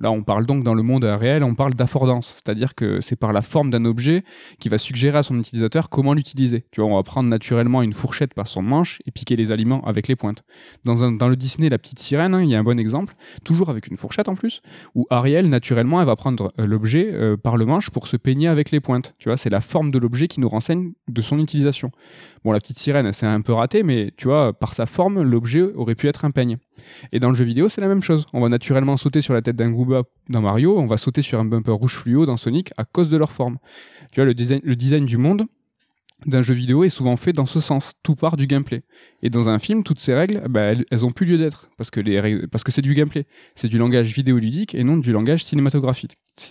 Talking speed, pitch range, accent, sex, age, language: 260 wpm, 120-155 Hz, French, male, 20-39, French